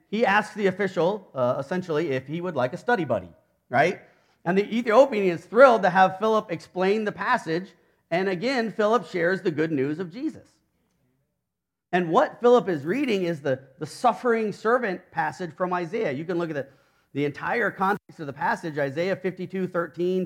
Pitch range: 145-205 Hz